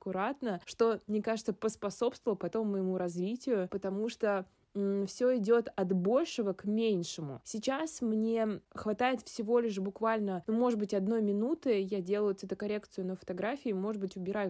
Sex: female